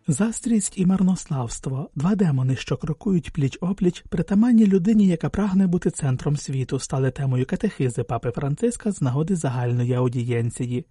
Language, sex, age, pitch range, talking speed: Ukrainian, male, 30-49, 140-195 Hz, 140 wpm